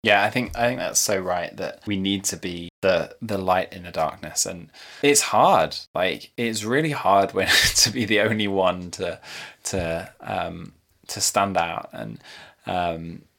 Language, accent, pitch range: English, British, 85-105 Hz